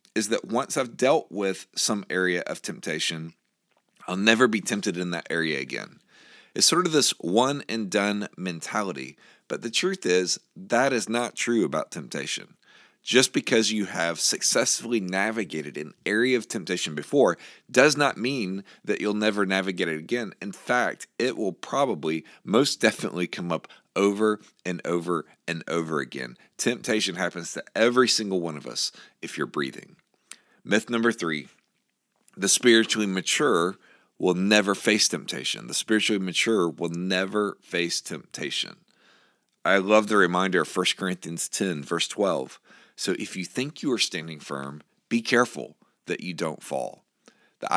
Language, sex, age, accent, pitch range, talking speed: English, male, 40-59, American, 85-110 Hz, 155 wpm